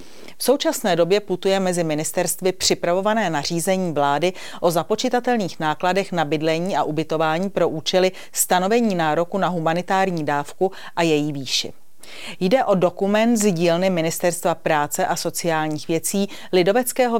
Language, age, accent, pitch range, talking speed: Czech, 40-59, native, 165-205 Hz, 130 wpm